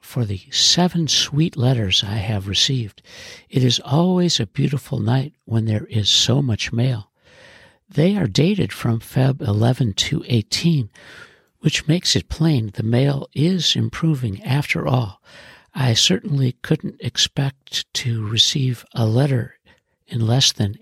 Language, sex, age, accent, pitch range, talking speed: English, male, 60-79, American, 115-150 Hz, 140 wpm